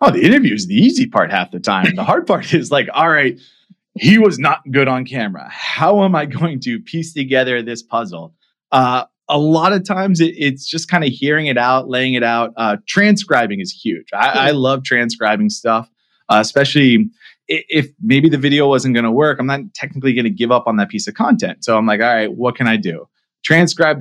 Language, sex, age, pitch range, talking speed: English, male, 20-39, 115-155 Hz, 220 wpm